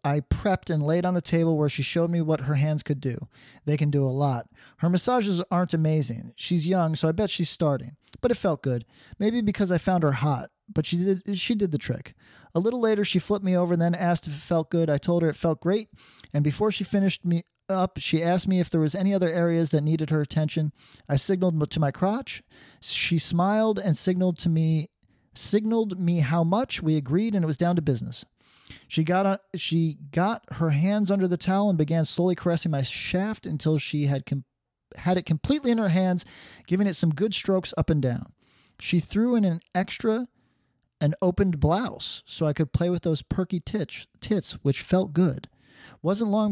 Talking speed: 215 wpm